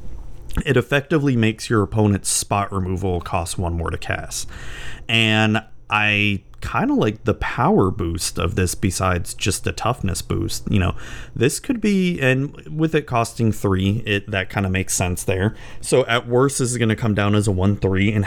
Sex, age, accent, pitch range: male, 30-49, American, 95-120 Hz